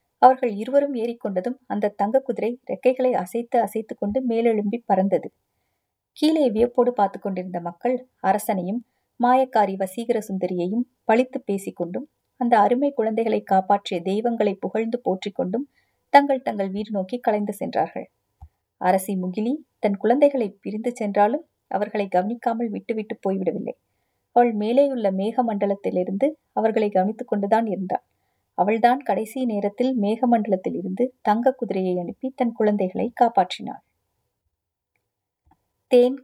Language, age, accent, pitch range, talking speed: Tamil, 30-49, native, 195-245 Hz, 110 wpm